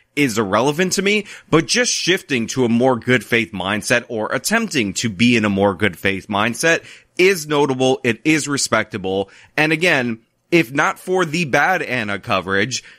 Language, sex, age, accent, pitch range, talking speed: English, male, 30-49, American, 110-155 Hz, 170 wpm